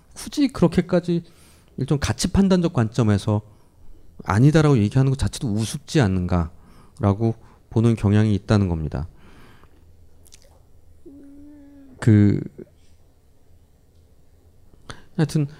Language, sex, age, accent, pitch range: Korean, male, 40-59, native, 95-155 Hz